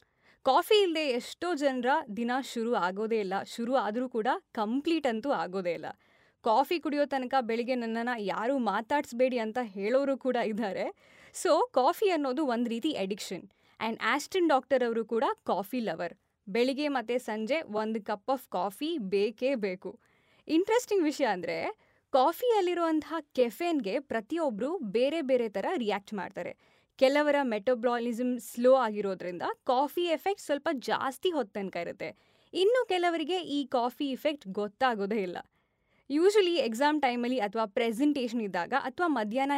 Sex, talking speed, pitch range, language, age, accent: female, 130 wpm, 220-305 Hz, Kannada, 20-39, native